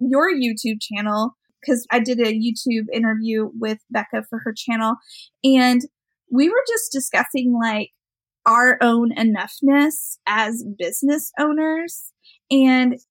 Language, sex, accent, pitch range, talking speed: English, female, American, 225-275 Hz, 125 wpm